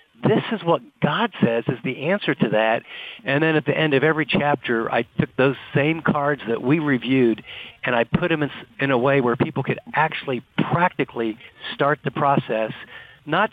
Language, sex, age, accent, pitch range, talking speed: English, male, 50-69, American, 120-155 Hz, 185 wpm